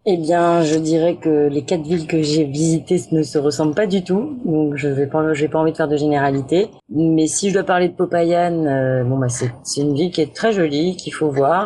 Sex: female